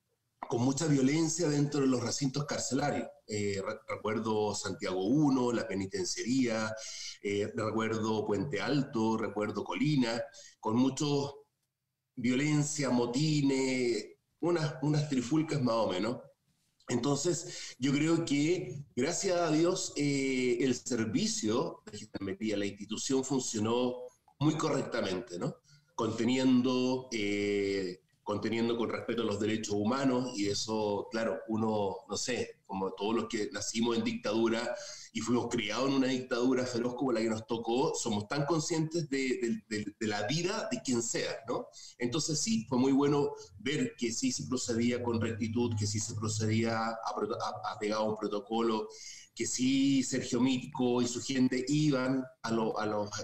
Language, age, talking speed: Spanish, 40-59, 145 wpm